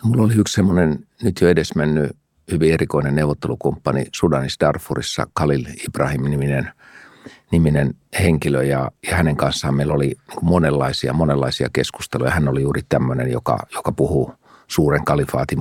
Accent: native